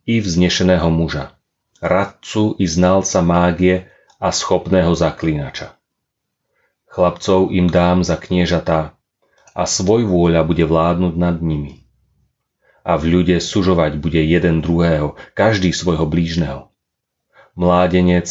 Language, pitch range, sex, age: Slovak, 80-95 Hz, male, 30-49